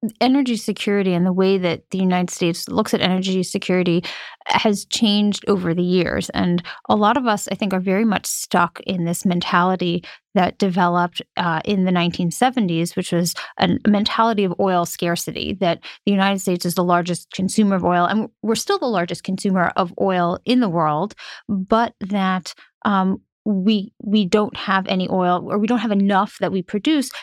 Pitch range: 175-210 Hz